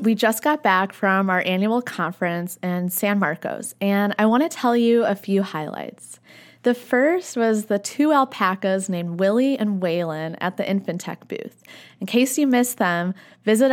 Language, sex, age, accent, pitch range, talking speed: English, female, 20-39, American, 185-240 Hz, 175 wpm